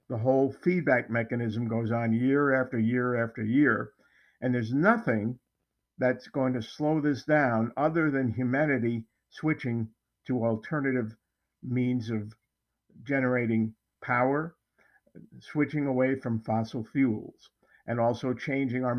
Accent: American